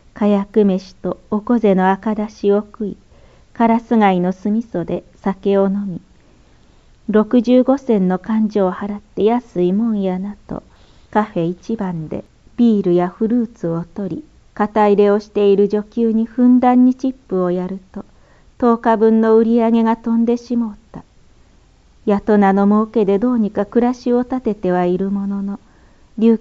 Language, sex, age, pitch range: Japanese, female, 40-59, 195-230 Hz